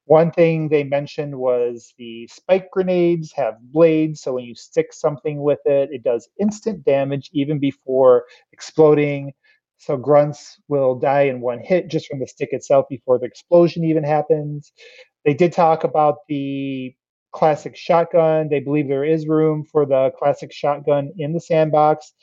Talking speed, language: 160 wpm, English